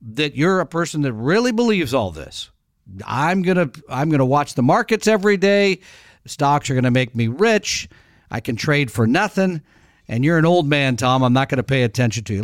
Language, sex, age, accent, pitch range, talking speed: English, male, 50-69, American, 130-175 Hz, 215 wpm